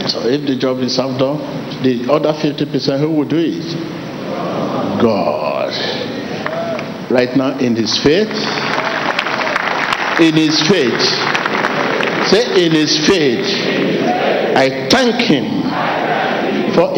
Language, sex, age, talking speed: English, male, 60-79, 110 wpm